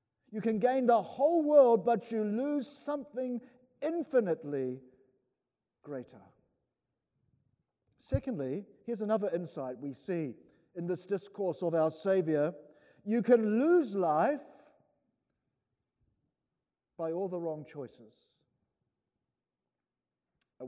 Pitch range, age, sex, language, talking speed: 165-245 Hz, 50-69, male, English, 100 wpm